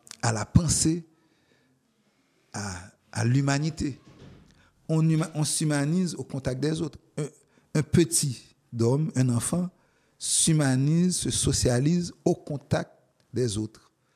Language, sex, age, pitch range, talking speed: French, male, 50-69, 115-150 Hz, 110 wpm